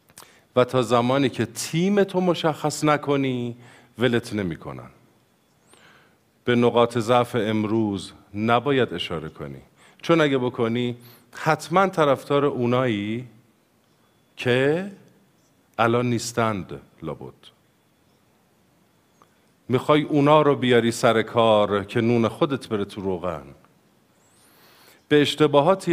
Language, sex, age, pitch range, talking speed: Persian, male, 50-69, 110-155 Hz, 95 wpm